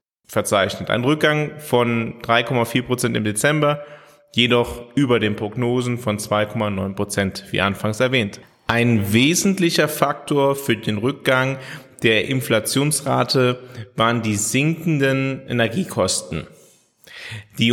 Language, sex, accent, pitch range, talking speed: German, male, German, 110-135 Hz, 100 wpm